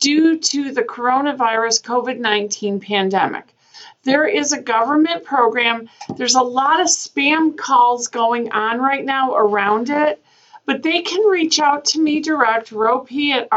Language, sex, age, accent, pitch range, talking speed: English, female, 40-59, American, 230-300 Hz, 145 wpm